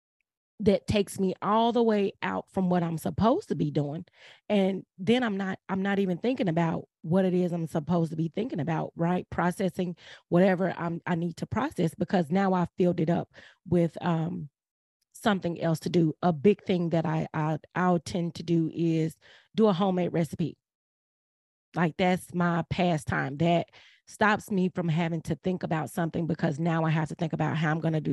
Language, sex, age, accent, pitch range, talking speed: English, female, 20-39, American, 160-195 Hz, 195 wpm